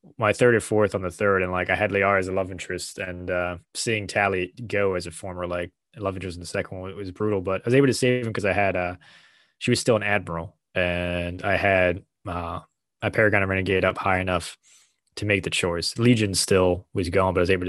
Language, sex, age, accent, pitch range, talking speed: English, male, 20-39, American, 95-110 Hz, 245 wpm